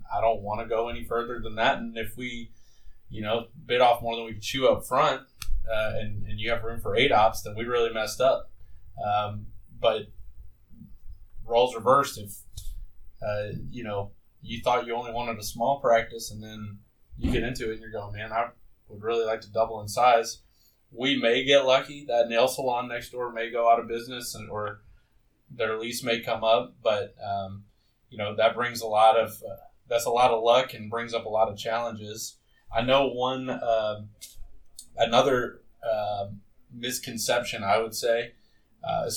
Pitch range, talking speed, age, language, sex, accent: 105-120 Hz, 190 wpm, 20-39, English, male, American